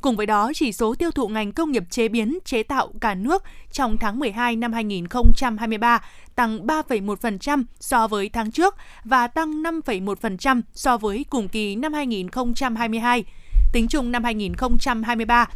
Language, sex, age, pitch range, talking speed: Vietnamese, female, 20-39, 225-265 Hz, 155 wpm